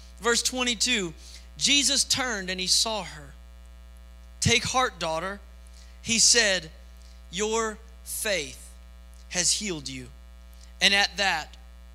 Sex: male